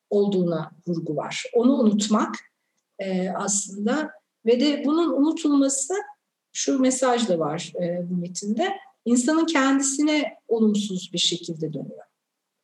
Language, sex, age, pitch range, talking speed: Turkish, female, 50-69, 205-270 Hz, 110 wpm